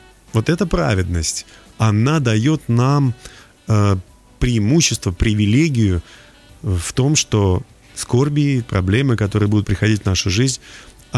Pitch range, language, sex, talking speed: 100-125 Hz, Russian, male, 100 wpm